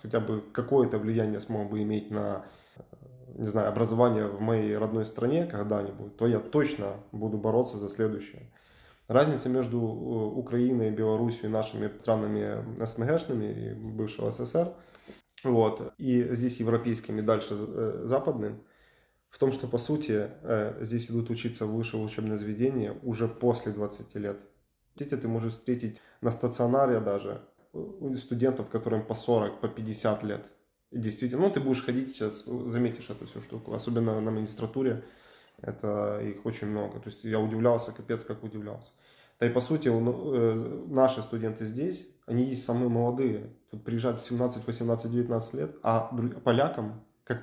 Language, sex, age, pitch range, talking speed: Russian, male, 20-39, 110-120 Hz, 145 wpm